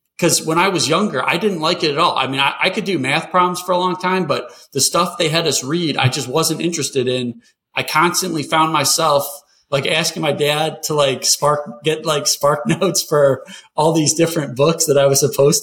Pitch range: 130-165 Hz